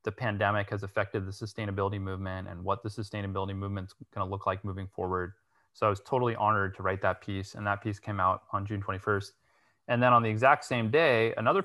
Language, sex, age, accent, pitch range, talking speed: English, male, 30-49, American, 100-115 Hz, 220 wpm